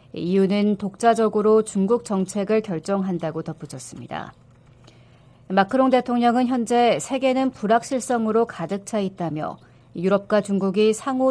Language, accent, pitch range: Korean, native, 180-235 Hz